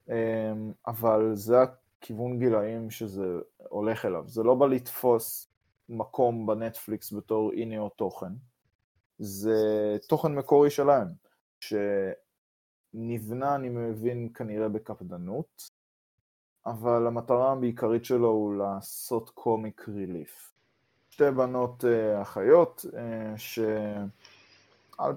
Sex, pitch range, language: male, 105-120 Hz, Hebrew